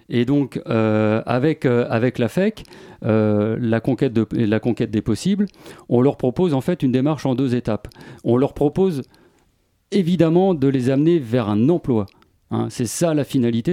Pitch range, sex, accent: 115-150 Hz, male, French